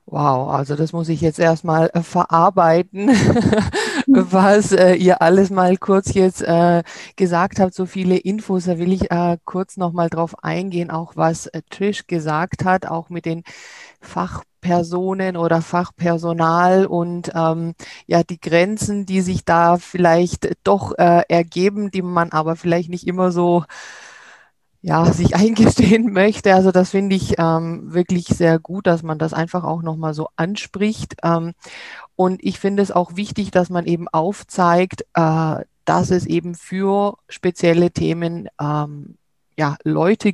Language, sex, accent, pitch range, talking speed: German, female, German, 165-185 Hz, 150 wpm